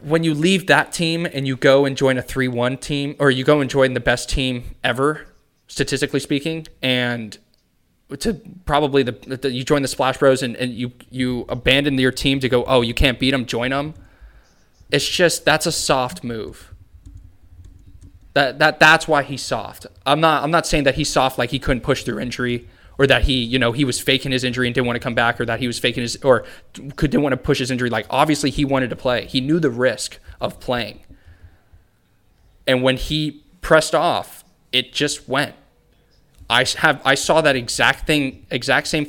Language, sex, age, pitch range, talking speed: English, male, 20-39, 120-145 Hz, 205 wpm